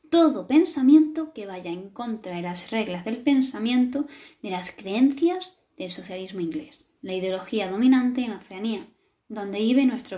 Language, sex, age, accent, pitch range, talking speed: Spanish, female, 10-29, Spanish, 205-295 Hz, 145 wpm